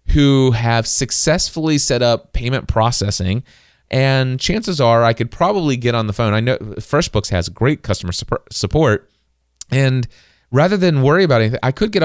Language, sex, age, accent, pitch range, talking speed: English, male, 30-49, American, 110-150 Hz, 165 wpm